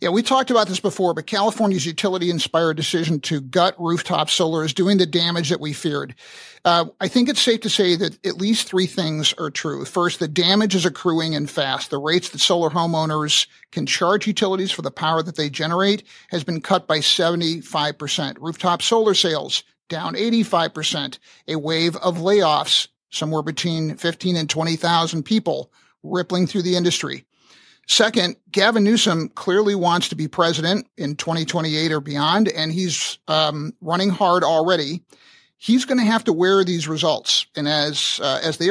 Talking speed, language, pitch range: 170 wpm, English, 155-190 Hz